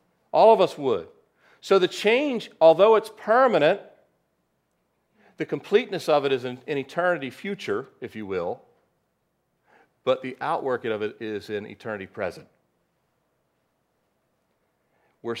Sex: male